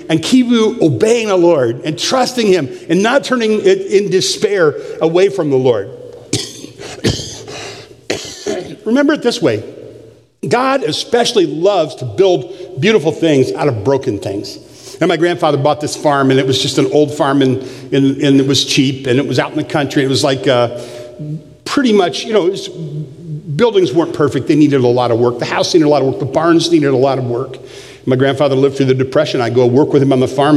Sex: male